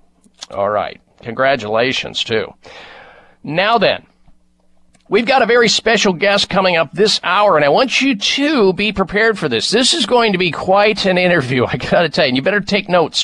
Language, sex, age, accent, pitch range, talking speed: English, male, 50-69, American, 155-210 Hz, 195 wpm